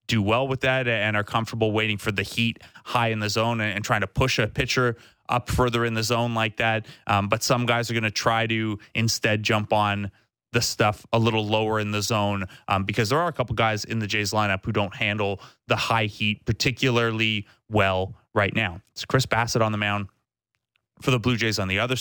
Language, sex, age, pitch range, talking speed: English, male, 20-39, 105-125 Hz, 225 wpm